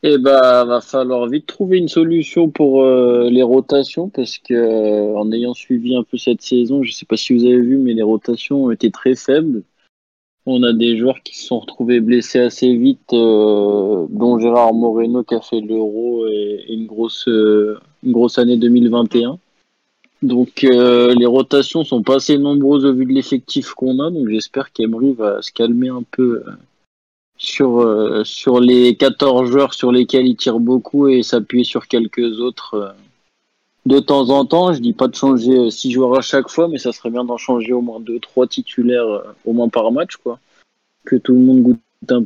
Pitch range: 120-135 Hz